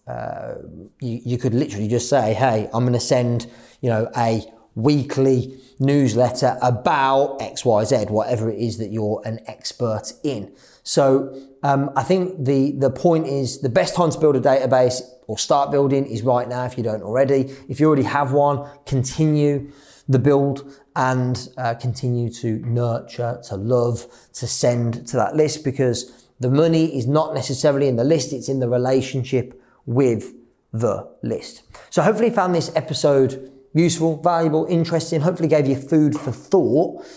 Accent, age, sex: British, 30-49, male